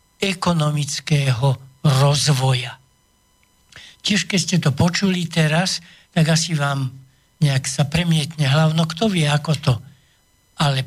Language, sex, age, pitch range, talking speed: Slovak, male, 60-79, 145-175 Hz, 110 wpm